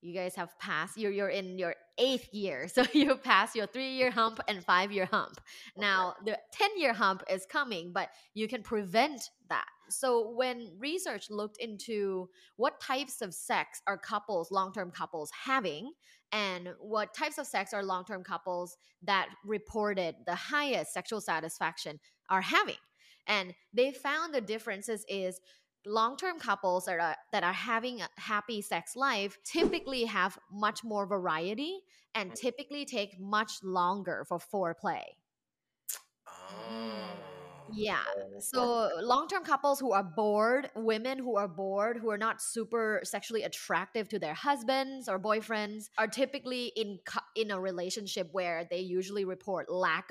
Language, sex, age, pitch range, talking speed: English, female, 20-39, 185-240 Hz, 145 wpm